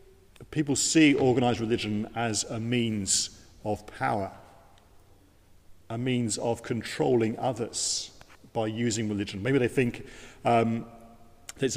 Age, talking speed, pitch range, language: 50-69, 110 wpm, 100-125 Hz, English